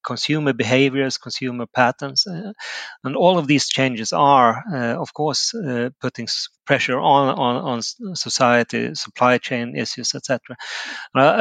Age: 30-49